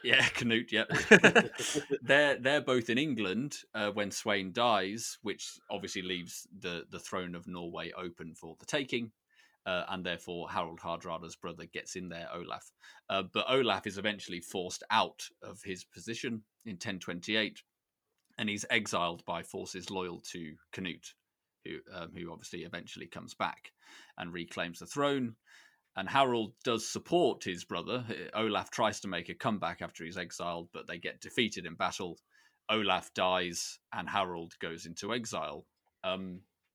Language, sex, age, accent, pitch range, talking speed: English, male, 30-49, British, 90-120 Hz, 155 wpm